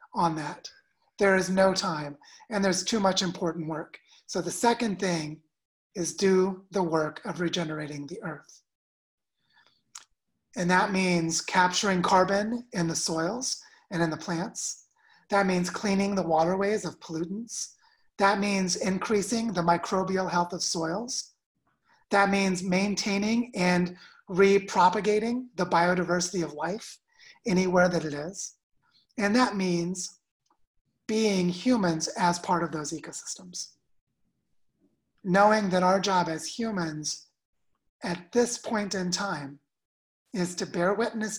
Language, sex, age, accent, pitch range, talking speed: English, male, 30-49, American, 165-200 Hz, 130 wpm